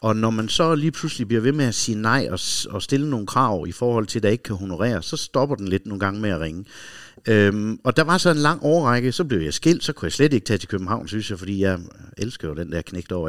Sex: male